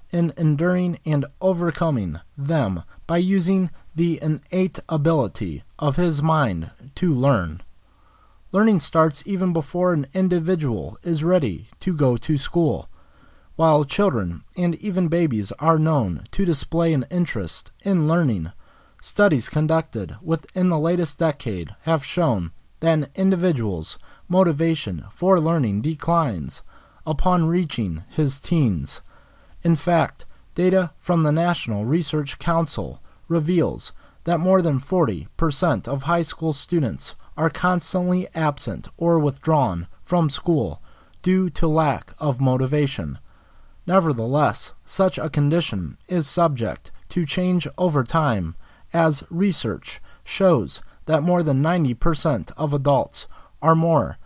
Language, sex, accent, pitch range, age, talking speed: English, male, American, 125-170 Hz, 30-49, 125 wpm